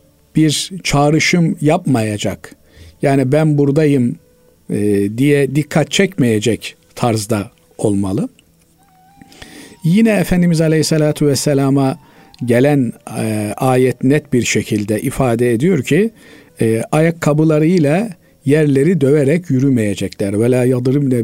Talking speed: 80 wpm